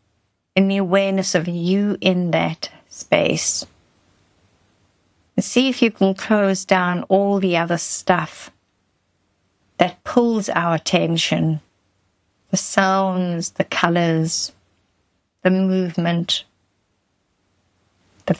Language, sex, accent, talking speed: English, female, British, 100 wpm